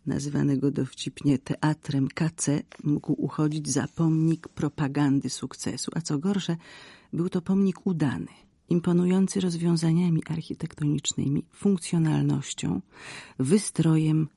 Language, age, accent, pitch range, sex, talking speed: Polish, 40-59, native, 150-180 Hz, female, 90 wpm